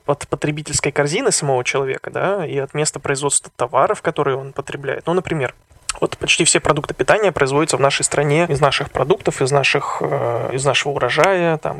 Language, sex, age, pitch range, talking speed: Russian, male, 20-39, 140-165 Hz, 170 wpm